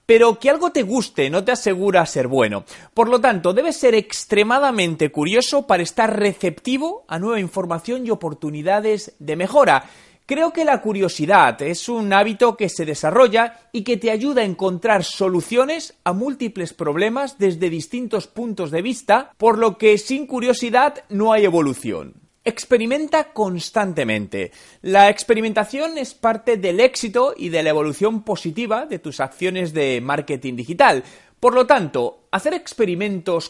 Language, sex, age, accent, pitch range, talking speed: Spanish, male, 30-49, Spanish, 180-255 Hz, 150 wpm